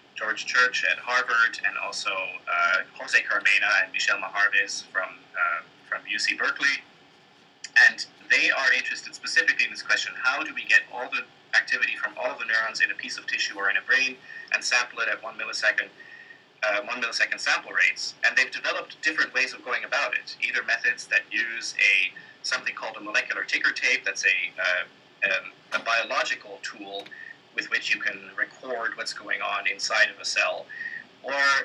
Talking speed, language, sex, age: 180 wpm, English, male, 30-49